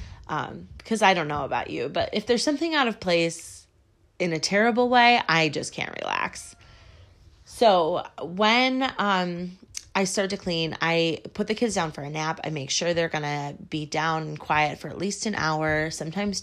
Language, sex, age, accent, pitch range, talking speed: English, female, 30-49, American, 155-205 Hz, 195 wpm